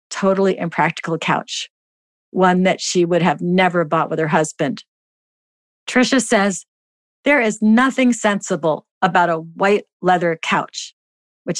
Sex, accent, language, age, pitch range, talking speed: female, American, English, 50-69, 170-220 Hz, 130 wpm